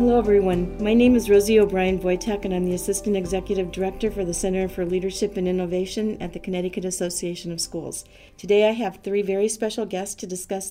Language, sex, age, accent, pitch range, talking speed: English, female, 40-59, American, 180-205 Hz, 200 wpm